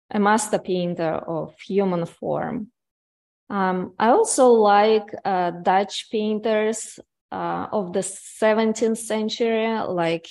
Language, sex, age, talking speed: English, female, 20-39, 110 wpm